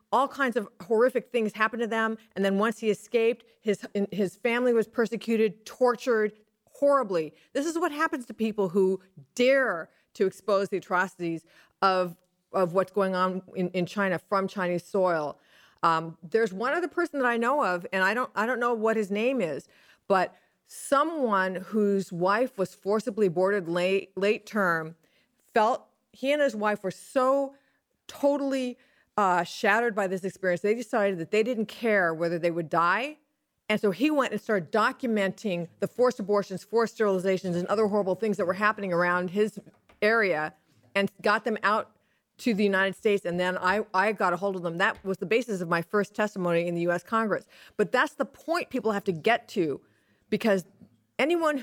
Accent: American